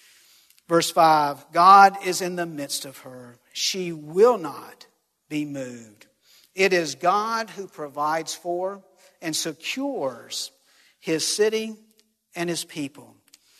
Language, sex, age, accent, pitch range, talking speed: English, male, 50-69, American, 155-195 Hz, 120 wpm